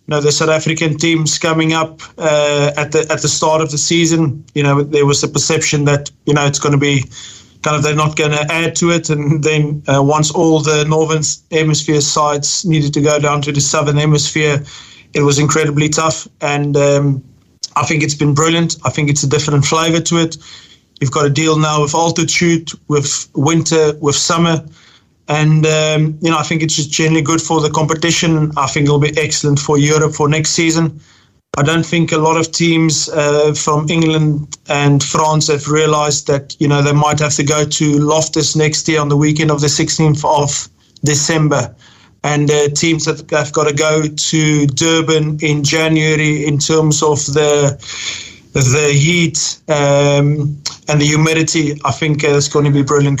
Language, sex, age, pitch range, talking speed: English, male, 30-49, 145-160 Hz, 195 wpm